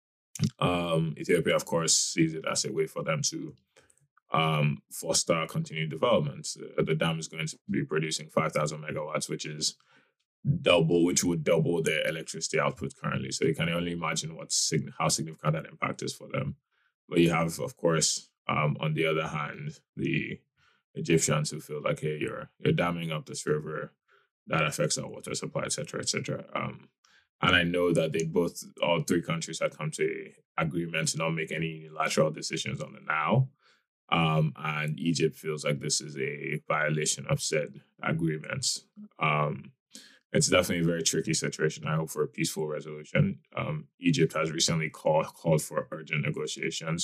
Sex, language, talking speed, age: male, English, 175 wpm, 20-39